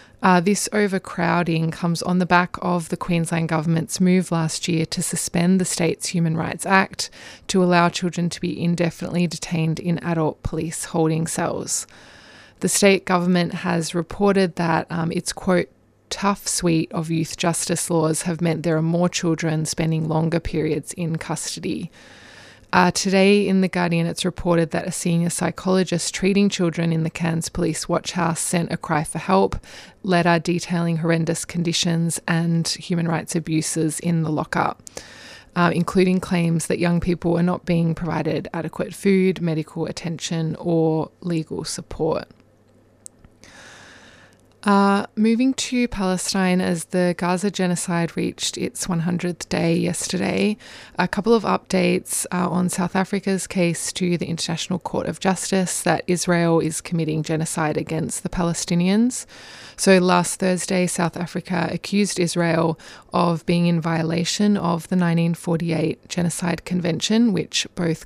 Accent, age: Australian, 20-39